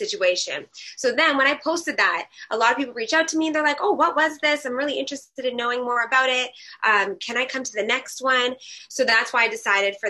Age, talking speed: 20-39, 260 wpm